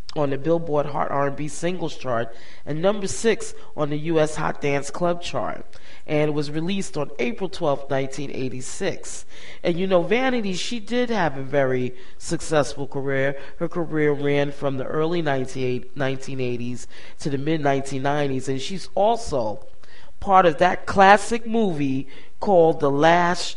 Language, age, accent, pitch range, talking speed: English, 30-49, American, 135-175 Hz, 145 wpm